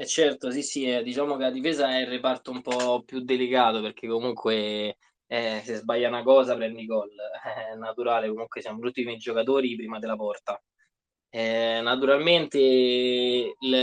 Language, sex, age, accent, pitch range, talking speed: Italian, male, 20-39, native, 115-140 Hz, 160 wpm